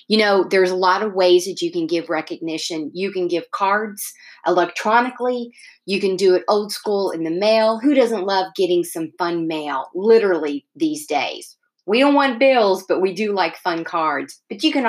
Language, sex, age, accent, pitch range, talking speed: English, female, 30-49, American, 175-235 Hz, 200 wpm